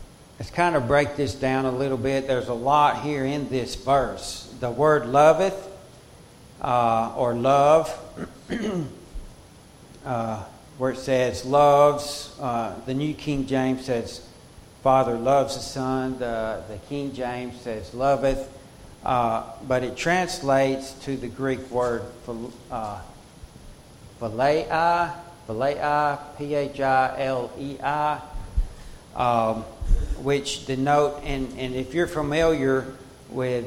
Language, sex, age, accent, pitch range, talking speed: English, male, 60-79, American, 120-145 Hz, 115 wpm